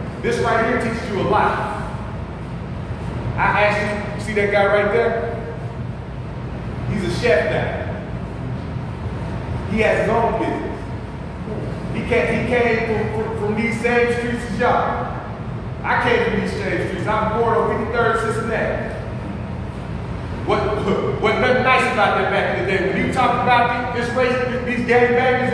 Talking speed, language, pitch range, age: 160 wpm, English, 205-245 Hz, 30-49